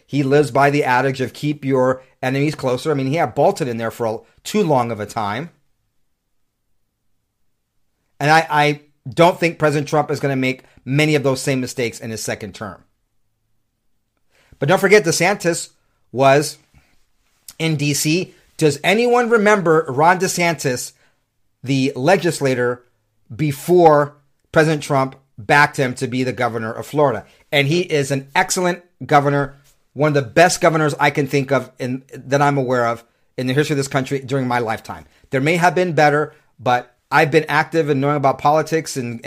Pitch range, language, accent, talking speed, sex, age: 115-150 Hz, English, American, 170 wpm, male, 40-59